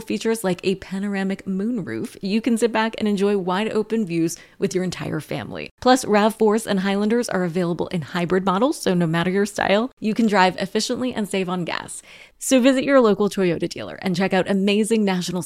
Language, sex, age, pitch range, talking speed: English, female, 20-39, 185-225 Hz, 200 wpm